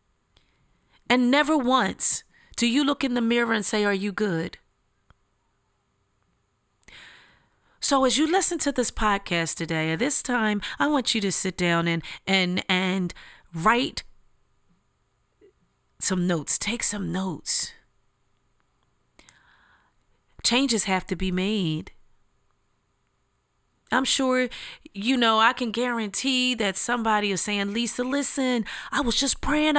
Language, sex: English, female